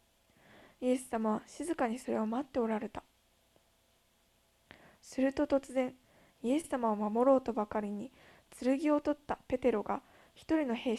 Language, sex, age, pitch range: Japanese, female, 20-39, 230-275 Hz